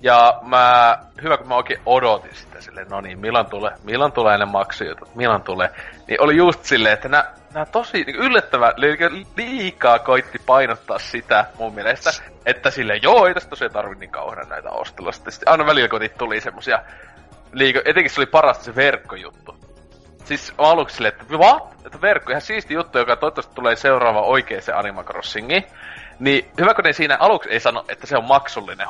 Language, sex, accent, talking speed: Finnish, male, native, 170 wpm